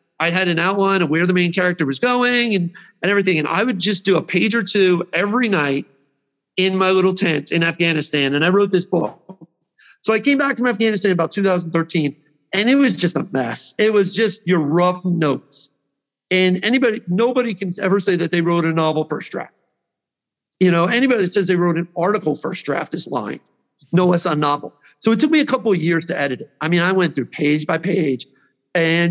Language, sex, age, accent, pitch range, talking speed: English, male, 40-59, American, 160-200 Hz, 220 wpm